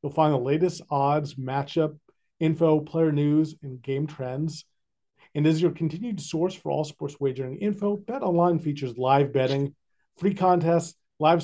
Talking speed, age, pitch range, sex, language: 150 wpm, 40-59, 130-160 Hz, male, English